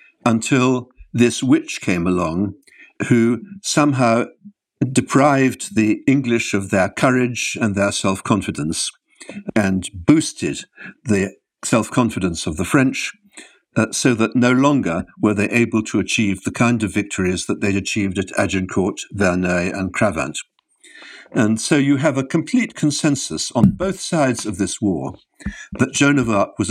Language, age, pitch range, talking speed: English, 60-79, 100-135 Hz, 140 wpm